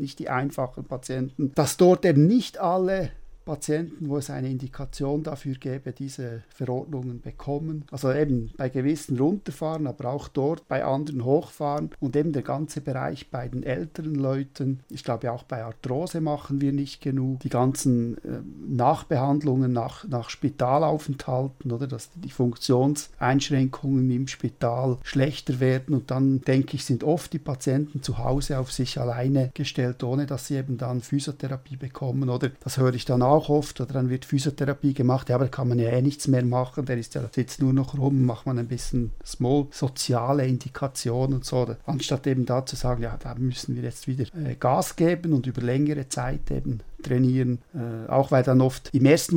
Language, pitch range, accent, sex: German, 130-145 Hz, German, male